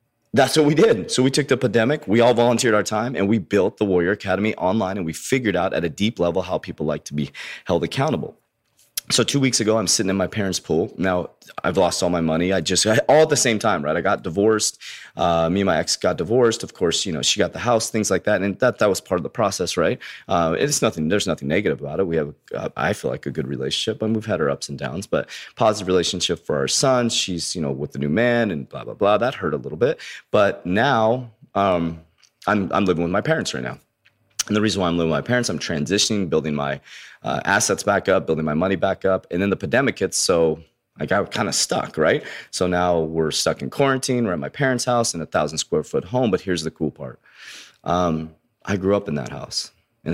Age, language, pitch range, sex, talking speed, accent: 30-49, English, 80-115 Hz, male, 255 wpm, American